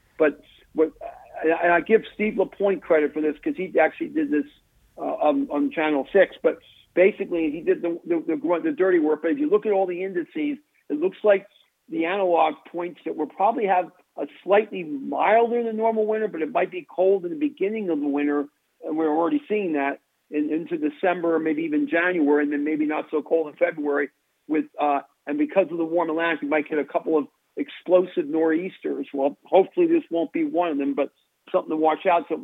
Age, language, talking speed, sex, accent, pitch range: 50-69, English, 210 wpm, male, American, 155-200 Hz